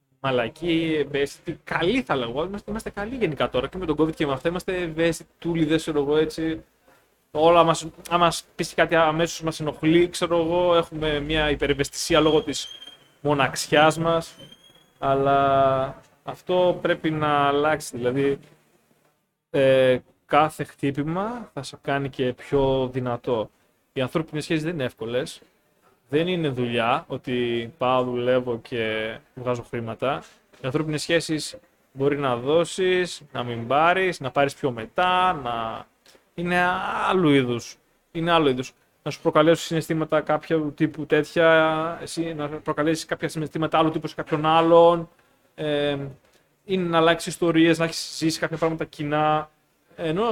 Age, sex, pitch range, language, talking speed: 20-39, male, 140-165 Hz, Greek, 140 wpm